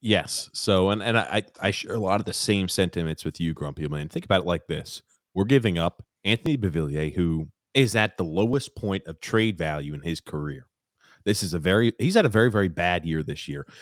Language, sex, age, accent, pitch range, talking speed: English, male, 30-49, American, 90-120 Hz, 225 wpm